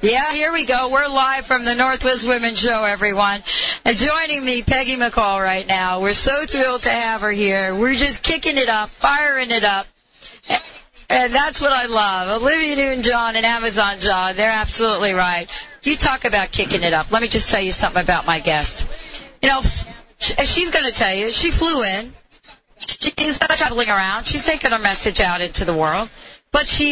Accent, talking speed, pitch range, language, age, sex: American, 190 wpm, 195-270 Hz, English, 40-59, female